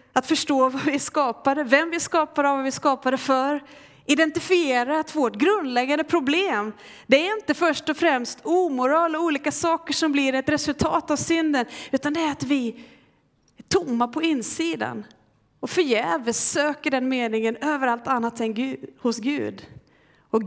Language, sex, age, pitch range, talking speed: Swedish, female, 30-49, 225-300 Hz, 160 wpm